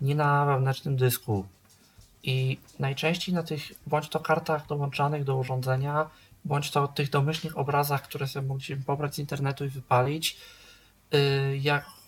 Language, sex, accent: Polish, male, native